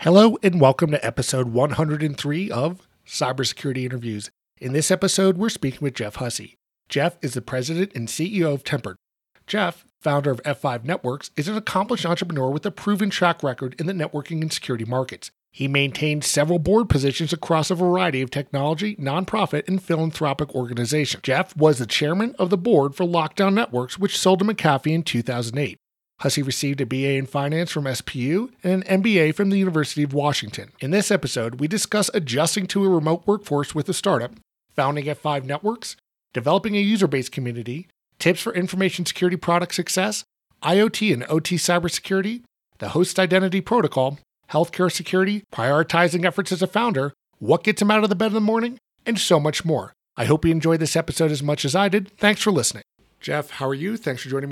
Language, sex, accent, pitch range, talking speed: English, male, American, 140-190 Hz, 185 wpm